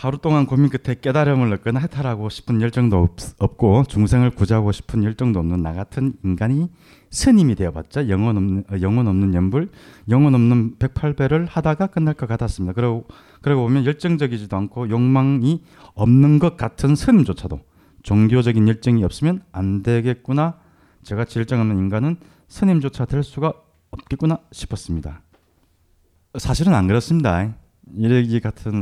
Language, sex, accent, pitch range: Korean, male, native, 95-135 Hz